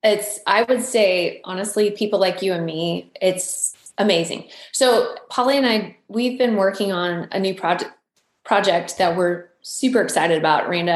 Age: 20-39